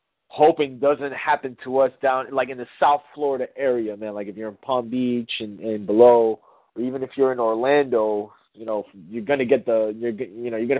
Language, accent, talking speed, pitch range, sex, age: English, American, 220 wpm, 120-155 Hz, male, 30-49